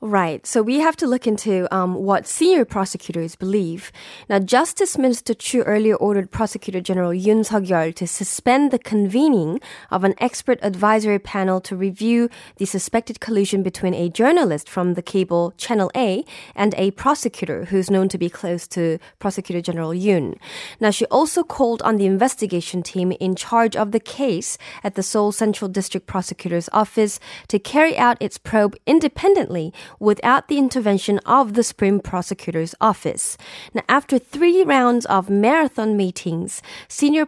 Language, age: Korean, 20-39